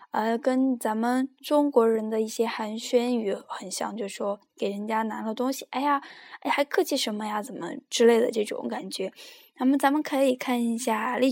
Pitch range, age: 230-305 Hz, 10-29